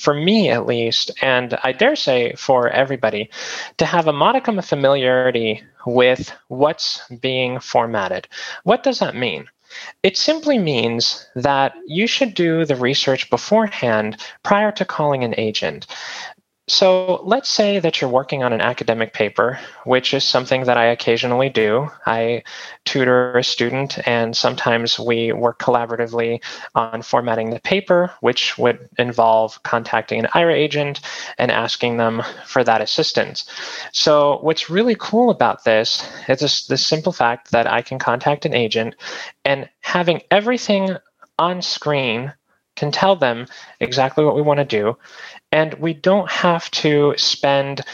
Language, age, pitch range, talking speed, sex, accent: English, 20-39, 120-165 Hz, 150 wpm, male, American